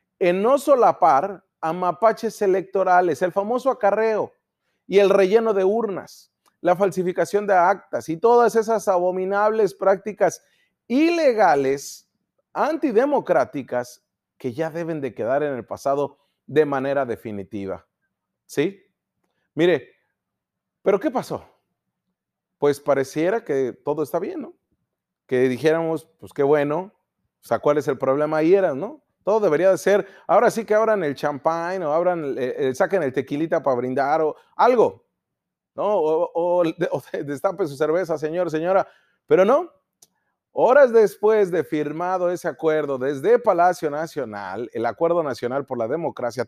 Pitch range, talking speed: 145-200 Hz, 140 wpm